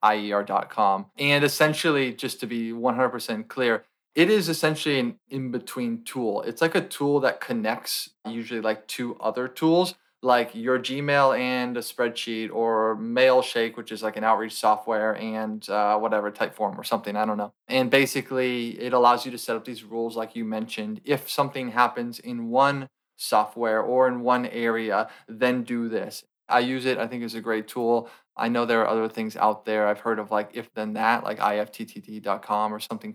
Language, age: English, 20-39